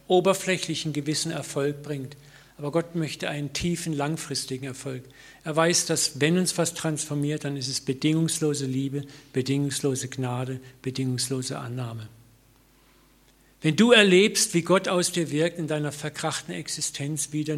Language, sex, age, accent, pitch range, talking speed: German, male, 50-69, German, 140-165 Hz, 135 wpm